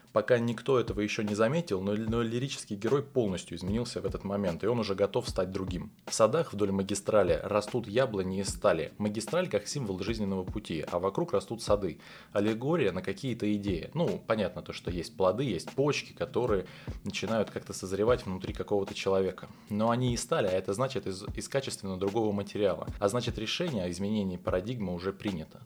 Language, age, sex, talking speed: Russian, 20-39, male, 180 wpm